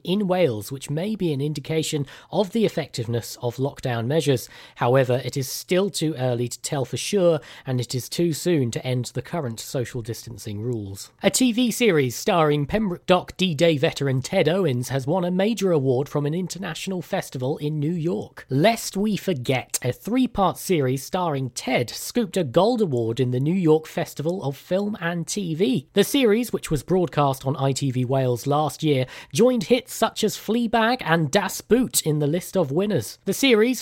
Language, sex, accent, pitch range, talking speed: English, male, British, 130-190 Hz, 185 wpm